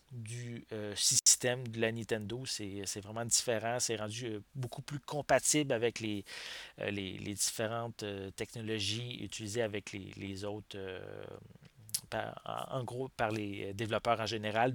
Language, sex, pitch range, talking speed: English, male, 110-140 Hz, 140 wpm